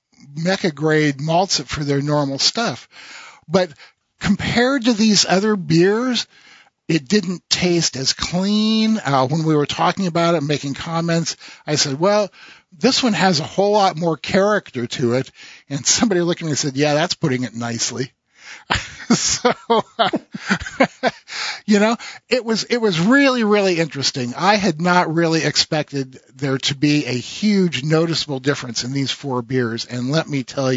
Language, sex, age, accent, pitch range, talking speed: English, male, 50-69, American, 135-185 Hz, 160 wpm